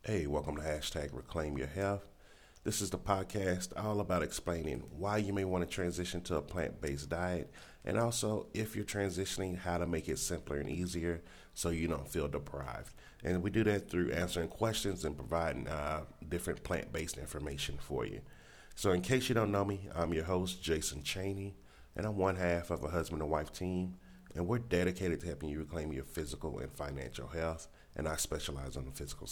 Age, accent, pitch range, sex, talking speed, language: 40-59, American, 80-95 Hz, male, 195 wpm, English